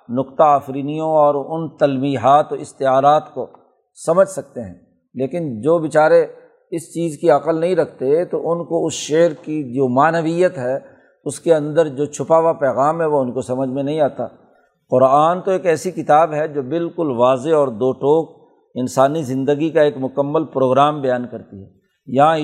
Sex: male